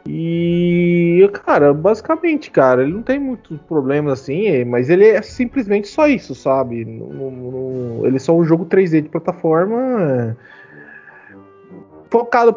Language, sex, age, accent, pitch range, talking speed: Portuguese, male, 20-39, Brazilian, 135-195 Hz, 125 wpm